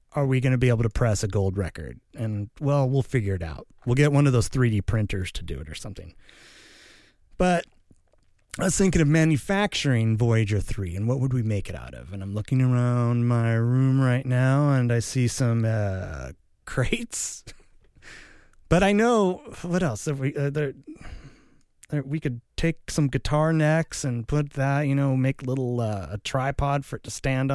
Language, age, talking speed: English, 30-49, 190 wpm